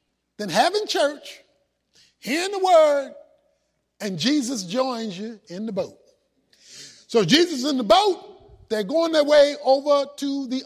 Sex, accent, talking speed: male, American, 140 wpm